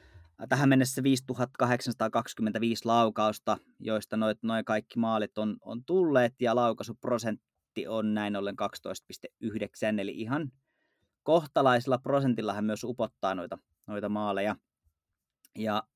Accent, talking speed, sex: native, 105 wpm, male